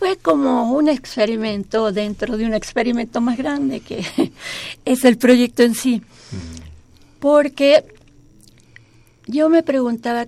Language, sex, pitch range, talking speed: Spanish, female, 210-270 Hz, 115 wpm